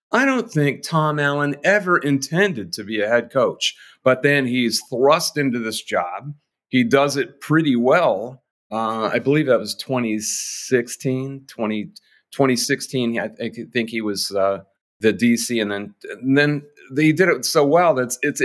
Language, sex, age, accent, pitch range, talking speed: English, male, 40-59, American, 115-160 Hz, 165 wpm